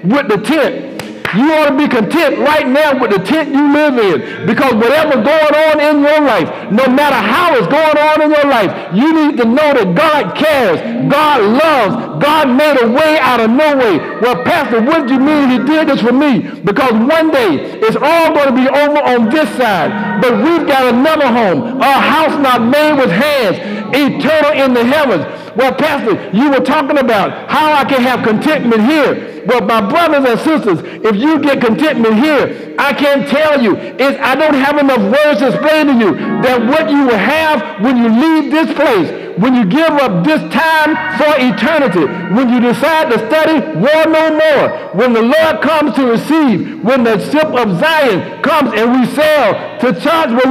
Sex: male